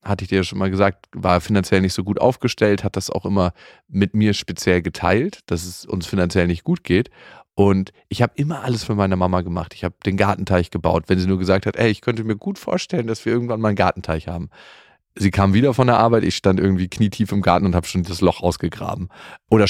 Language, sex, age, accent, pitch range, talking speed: German, male, 40-59, German, 90-110 Hz, 240 wpm